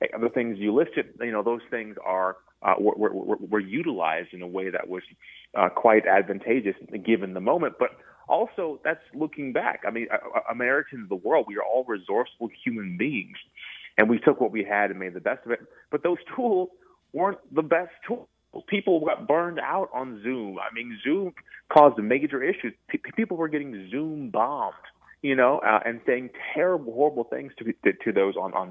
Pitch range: 100-155 Hz